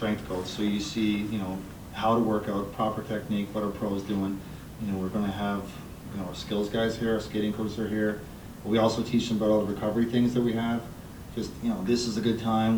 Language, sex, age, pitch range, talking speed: English, male, 30-49, 100-115 Hz, 255 wpm